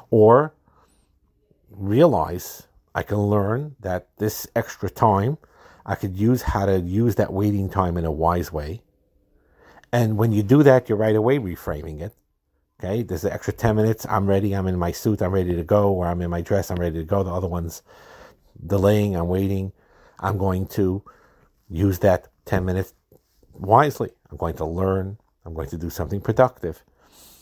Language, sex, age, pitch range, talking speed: English, male, 50-69, 85-105 Hz, 175 wpm